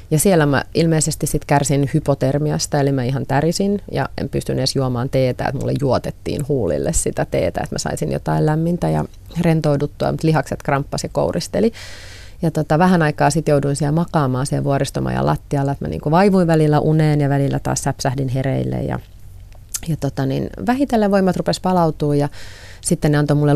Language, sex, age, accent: Finnish, female, 30-49, native